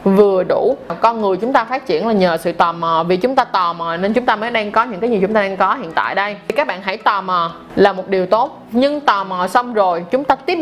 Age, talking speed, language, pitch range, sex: 20-39, 295 wpm, Vietnamese, 205-265 Hz, female